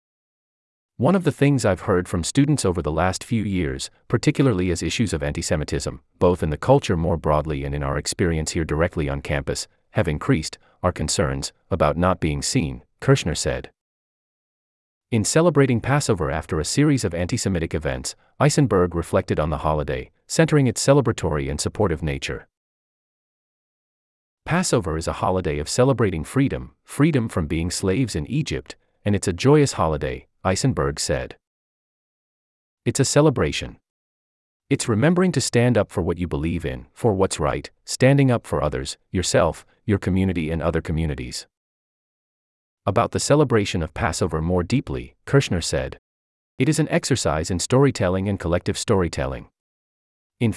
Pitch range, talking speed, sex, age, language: 80-125 Hz, 150 wpm, male, 30-49, English